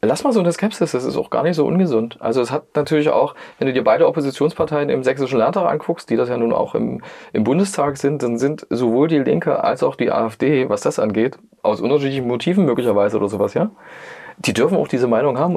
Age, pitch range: 30-49, 135-185 Hz